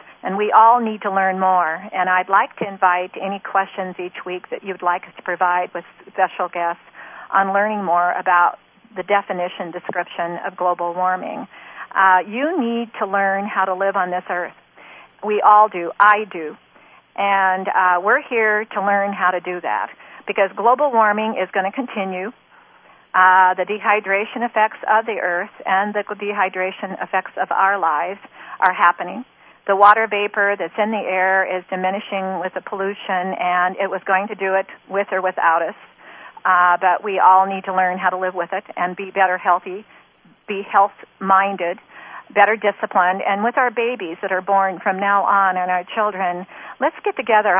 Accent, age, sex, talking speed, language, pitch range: American, 50-69, female, 180 wpm, English, 185-210 Hz